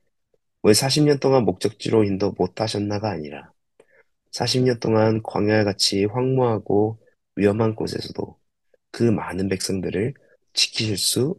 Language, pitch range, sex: Korean, 95-125 Hz, male